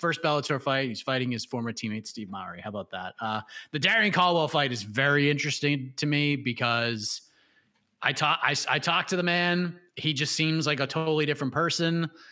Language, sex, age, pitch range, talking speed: English, male, 30-49, 130-170 Hz, 195 wpm